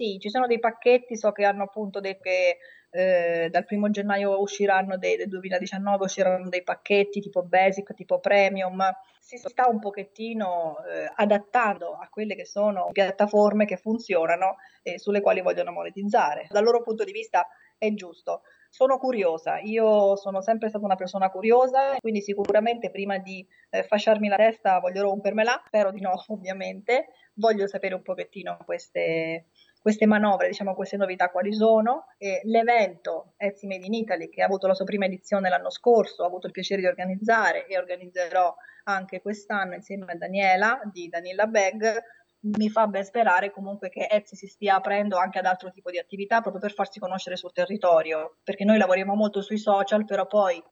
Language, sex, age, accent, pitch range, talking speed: Italian, female, 30-49, native, 185-220 Hz, 175 wpm